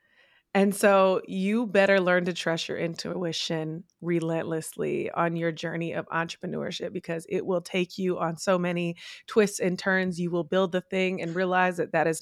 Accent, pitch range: American, 175-220 Hz